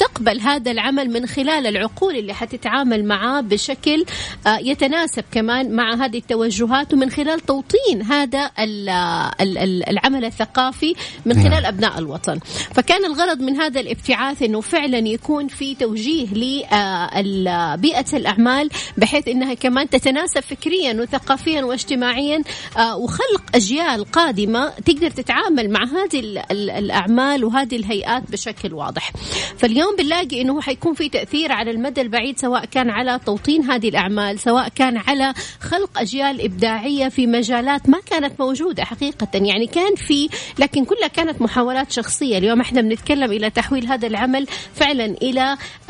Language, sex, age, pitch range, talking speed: Arabic, female, 30-49, 220-280 Hz, 130 wpm